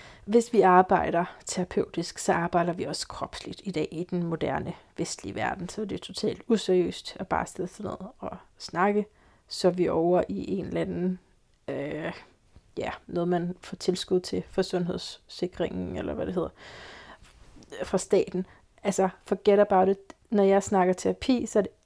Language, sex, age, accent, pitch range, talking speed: Danish, female, 30-49, native, 185-230 Hz, 170 wpm